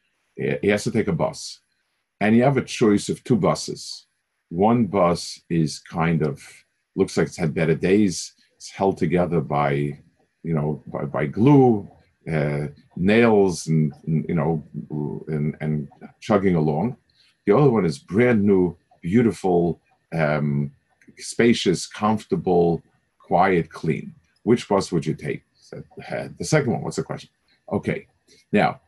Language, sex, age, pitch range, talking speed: English, male, 50-69, 80-115 Hz, 140 wpm